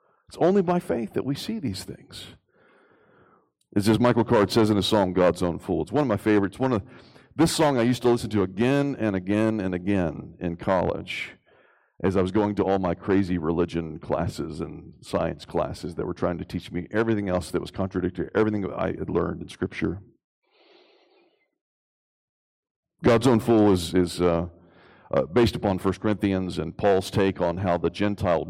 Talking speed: 185 wpm